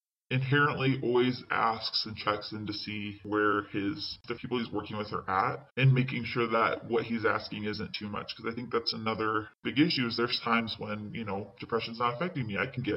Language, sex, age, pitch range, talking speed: English, female, 10-29, 105-125 Hz, 215 wpm